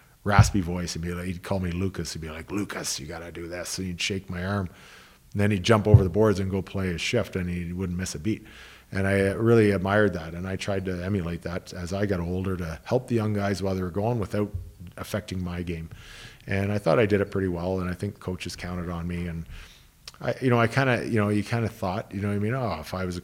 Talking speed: 275 wpm